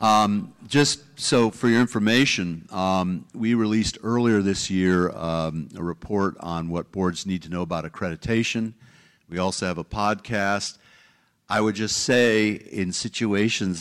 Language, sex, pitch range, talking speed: English, male, 90-115 Hz, 150 wpm